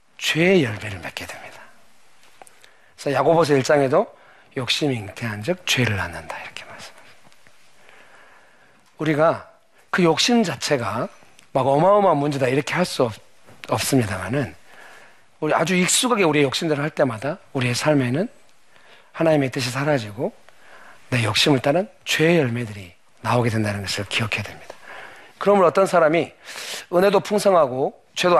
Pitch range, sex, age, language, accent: 115-170 Hz, male, 40-59, Korean, native